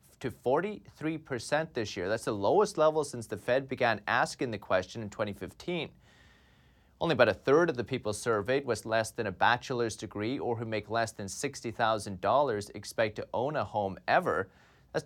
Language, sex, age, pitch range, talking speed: English, male, 30-49, 110-150 Hz, 175 wpm